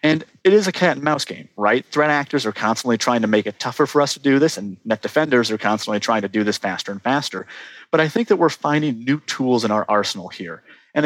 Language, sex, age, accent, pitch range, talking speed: English, male, 30-49, American, 105-140 Hz, 260 wpm